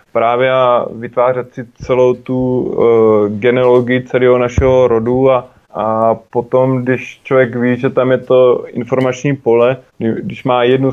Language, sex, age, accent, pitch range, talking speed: Czech, male, 20-39, native, 110-125 Hz, 150 wpm